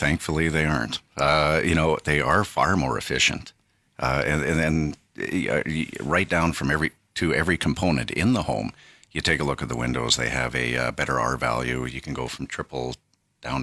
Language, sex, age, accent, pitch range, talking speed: English, male, 50-69, American, 65-80 Hz, 205 wpm